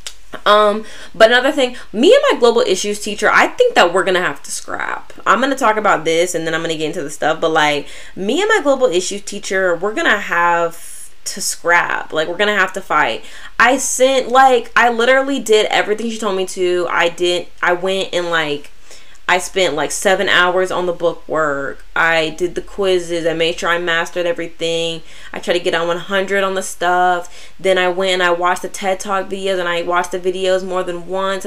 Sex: female